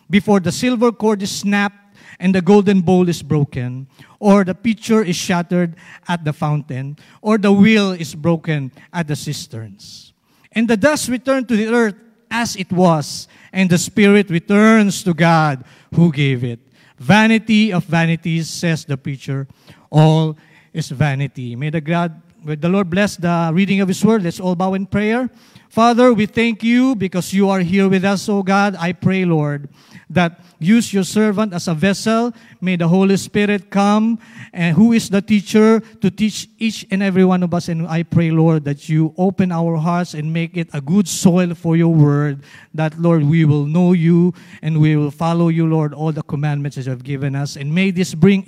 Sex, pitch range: male, 155-200 Hz